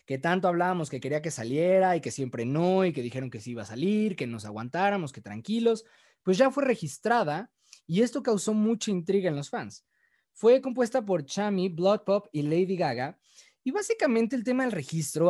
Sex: male